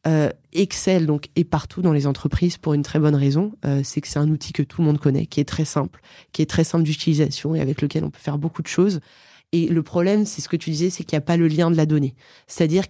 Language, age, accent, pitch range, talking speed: French, 20-39, French, 160-195 Hz, 285 wpm